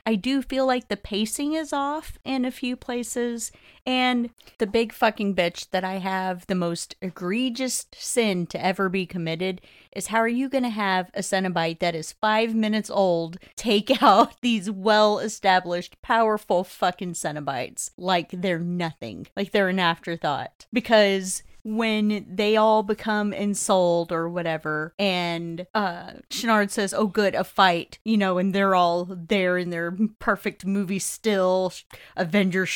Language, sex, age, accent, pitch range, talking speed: English, female, 30-49, American, 180-225 Hz, 155 wpm